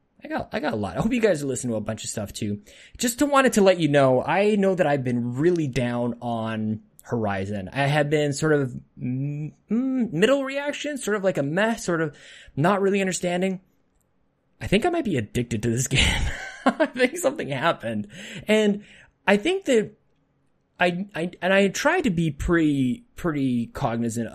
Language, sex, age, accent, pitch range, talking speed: English, male, 20-39, American, 120-185 Hz, 195 wpm